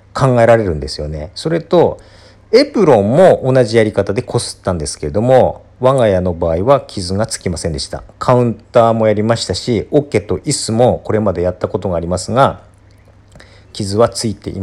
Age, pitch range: 40-59, 90-135 Hz